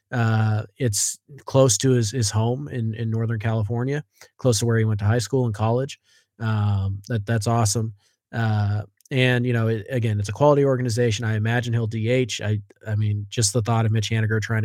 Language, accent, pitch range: English, American, 105-120 Hz